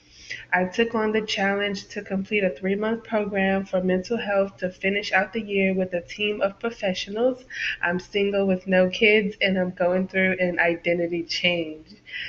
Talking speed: 170 wpm